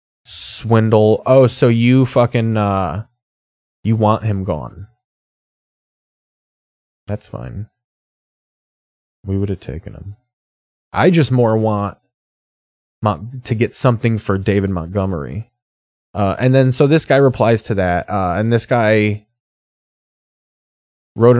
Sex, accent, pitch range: male, American, 100-125 Hz